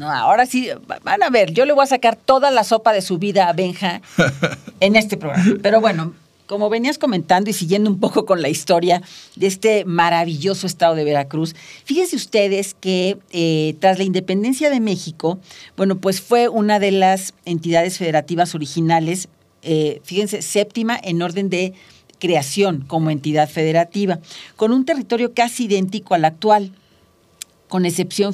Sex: female